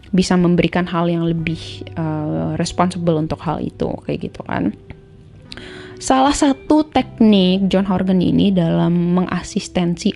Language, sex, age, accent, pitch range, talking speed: Indonesian, female, 20-39, native, 165-210 Hz, 125 wpm